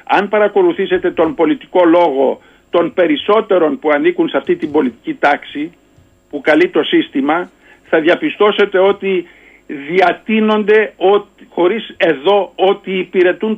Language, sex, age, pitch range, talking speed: Greek, male, 50-69, 185-225 Hz, 120 wpm